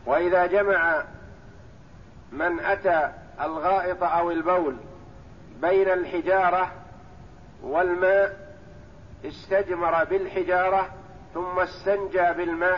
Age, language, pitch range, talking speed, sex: 50-69, Arabic, 165-195 Hz, 70 wpm, male